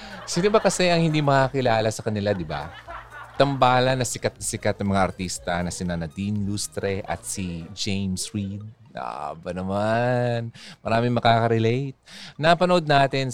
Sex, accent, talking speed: male, native, 150 wpm